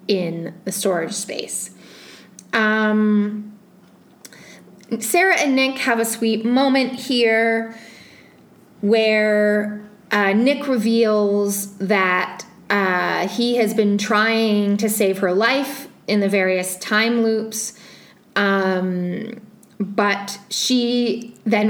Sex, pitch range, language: female, 200-235 Hz, English